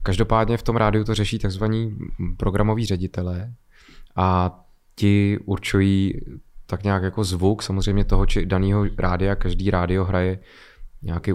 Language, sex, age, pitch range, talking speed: Czech, male, 20-39, 95-105 Hz, 125 wpm